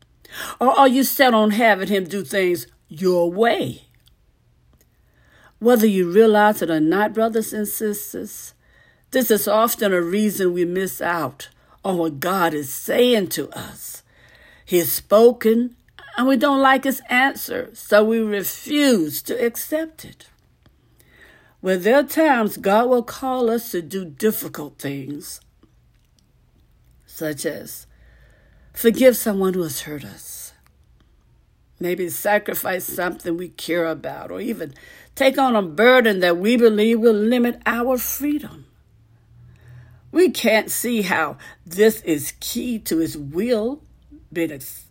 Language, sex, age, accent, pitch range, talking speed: English, female, 60-79, American, 170-240 Hz, 135 wpm